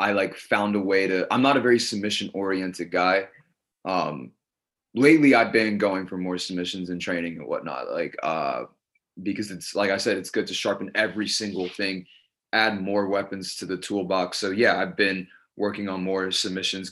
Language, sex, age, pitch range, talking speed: English, male, 20-39, 95-110 Hz, 190 wpm